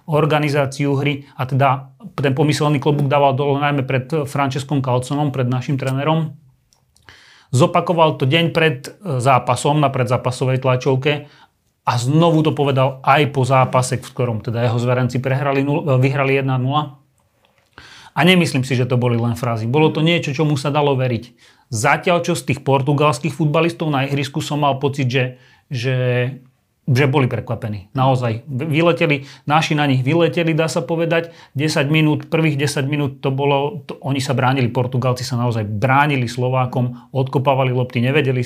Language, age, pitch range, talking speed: Slovak, 30-49, 125-150 Hz, 150 wpm